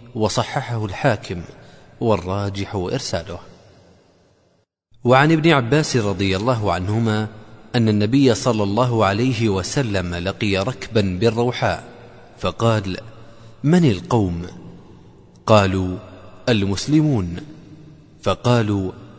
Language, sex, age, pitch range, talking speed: Arabic, male, 30-49, 100-130 Hz, 80 wpm